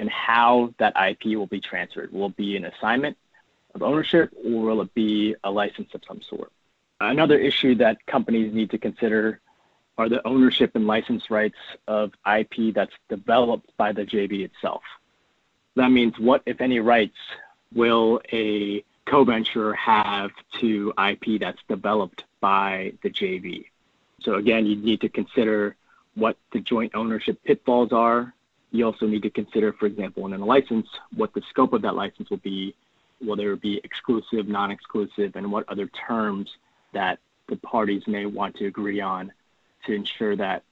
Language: English